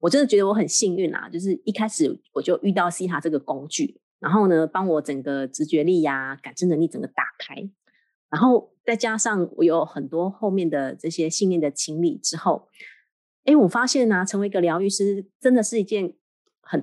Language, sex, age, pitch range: Chinese, female, 20-39, 165-215 Hz